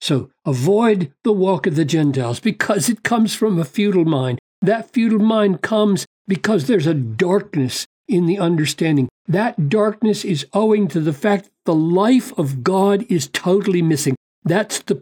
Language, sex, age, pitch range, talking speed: English, male, 60-79, 145-205 Hz, 170 wpm